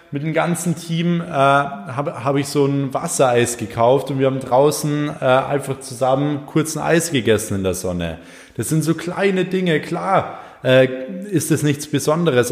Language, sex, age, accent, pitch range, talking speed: German, male, 20-39, German, 130-175 Hz, 175 wpm